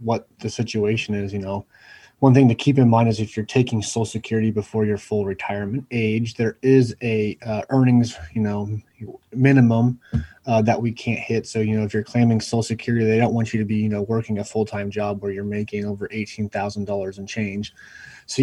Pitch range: 100-115 Hz